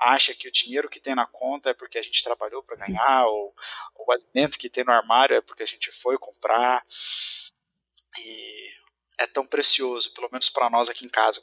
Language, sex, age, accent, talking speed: Portuguese, male, 20-39, Brazilian, 210 wpm